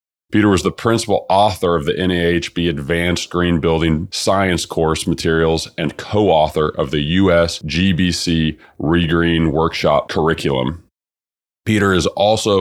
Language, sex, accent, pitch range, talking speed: English, male, American, 80-95 Hz, 125 wpm